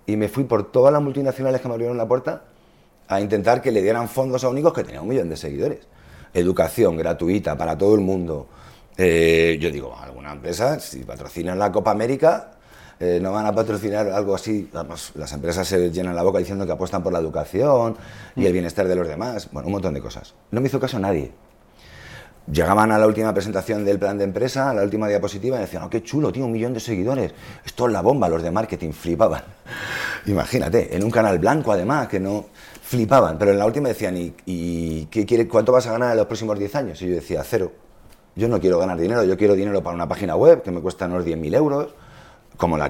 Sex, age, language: male, 30-49, Spanish